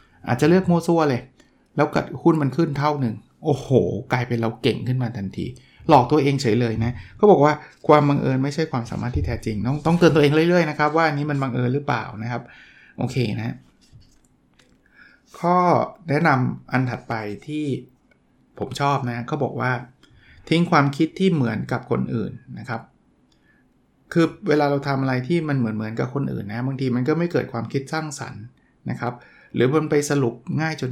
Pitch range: 115-150 Hz